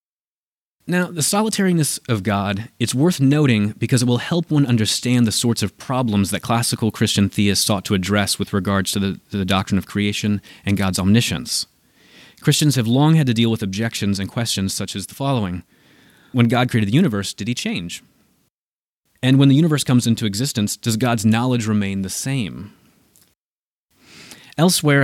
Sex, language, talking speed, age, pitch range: male, English, 175 wpm, 30-49, 100-130 Hz